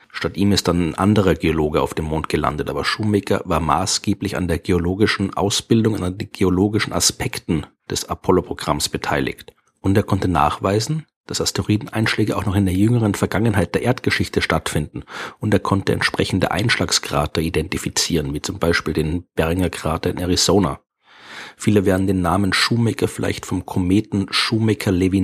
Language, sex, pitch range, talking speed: German, male, 90-105 Hz, 150 wpm